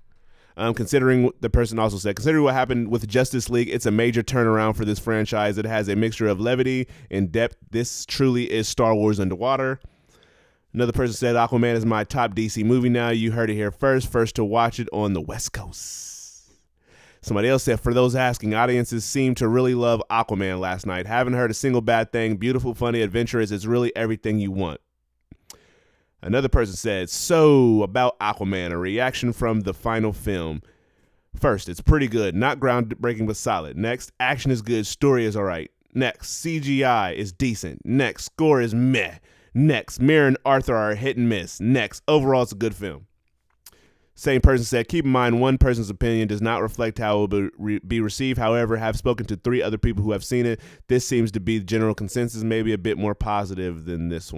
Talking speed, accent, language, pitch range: 195 wpm, American, English, 105-125 Hz